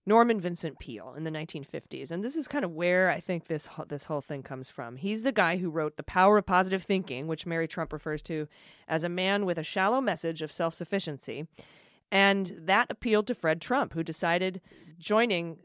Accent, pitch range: American, 155-190 Hz